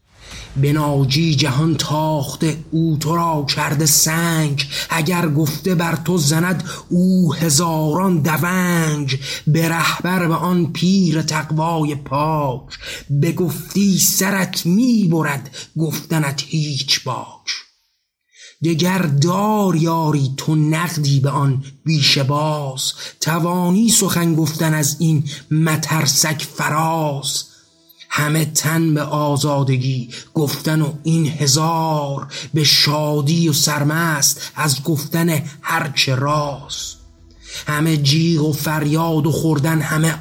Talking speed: 105 wpm